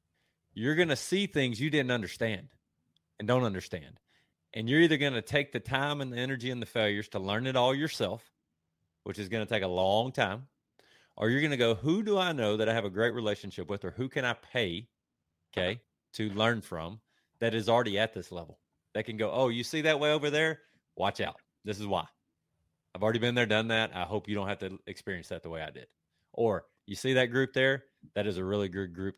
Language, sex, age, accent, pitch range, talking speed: English, male, 30-49, American, 90-125 Hz, 235 wpm